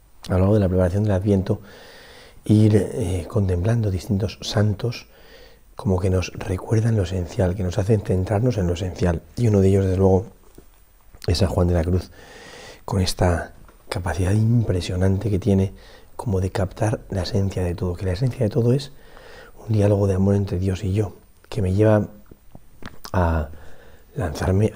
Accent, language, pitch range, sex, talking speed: Spanish, Spanish, 90-105 Hz, male, 170 wpm